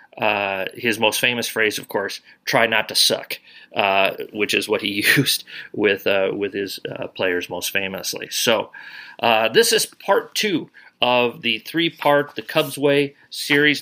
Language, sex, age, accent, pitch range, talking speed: English, male, 40-59, American, 115-150 Hz, 165 wpm